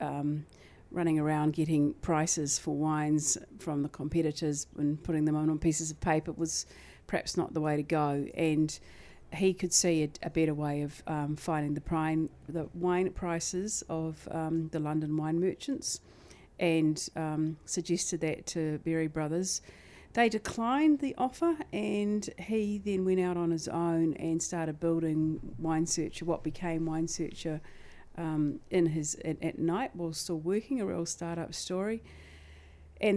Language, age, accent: English, 50-69, Australian